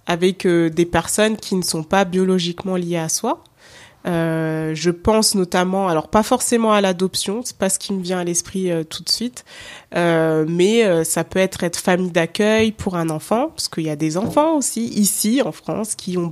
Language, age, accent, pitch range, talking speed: French, 20-39, French, 170-210 Hz, 210 wpm